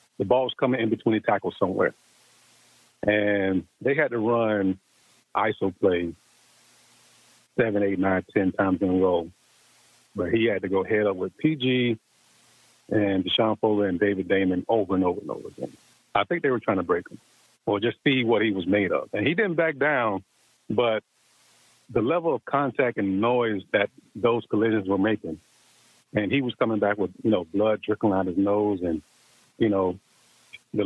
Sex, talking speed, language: male, 185 wpm, English